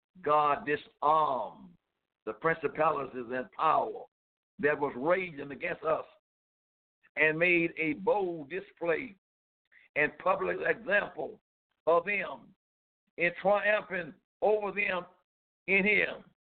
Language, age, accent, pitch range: English, 60-79, American, 155-210 Hz